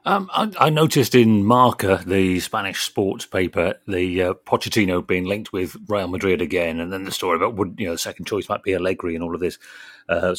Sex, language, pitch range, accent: male, English, 100-140 Hz, British